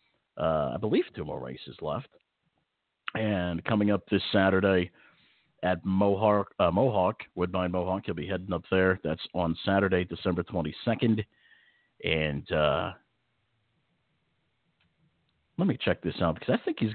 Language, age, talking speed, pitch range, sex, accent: English, 50-69, 135 wpm, 90-110 Hz, male, American